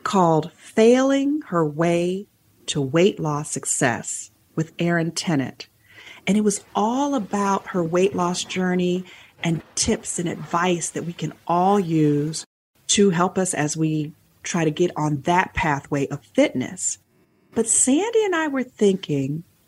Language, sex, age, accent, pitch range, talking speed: English, female, 40-59, American, 160-215 Hz, 145 wpm